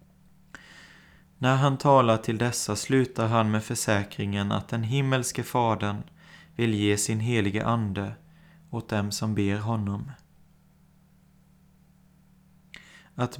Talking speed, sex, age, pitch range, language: 105 wpm, male, 30-49, 110-175 Hz, Swedish